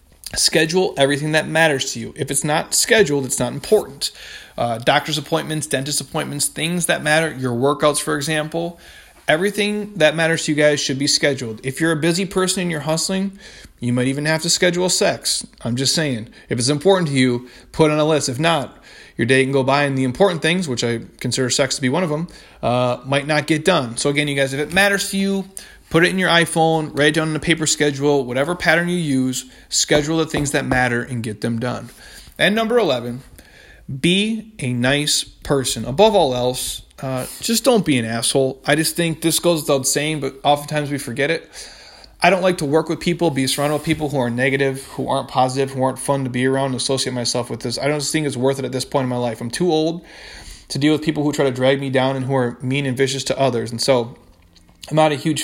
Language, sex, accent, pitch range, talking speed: English, male, American, 130-160 Hz, 235 wpm